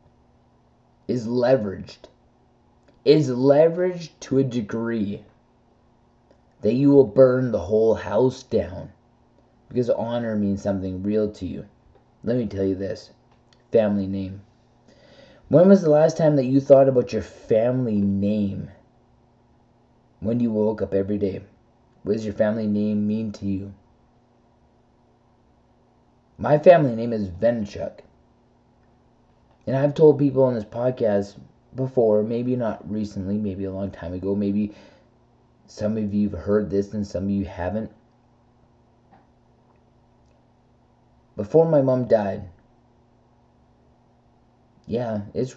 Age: 20-39